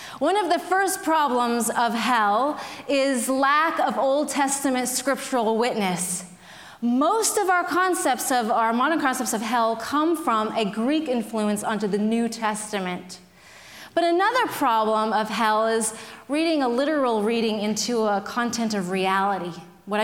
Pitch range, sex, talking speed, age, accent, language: 210-315 Hz, female, 145 wpm, 30-49, American, English